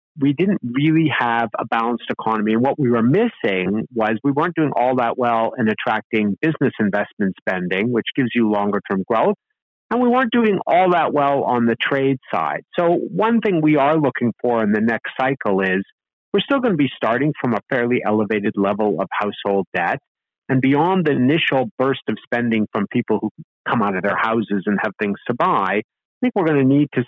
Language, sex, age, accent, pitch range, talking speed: English, male, 50-69, American, 105-150 Hz, 210 wpm